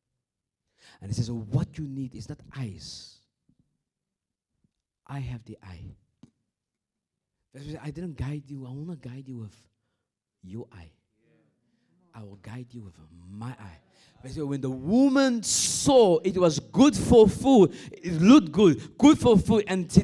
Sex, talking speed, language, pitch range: male, 145 wpm, English, 100-145 Hz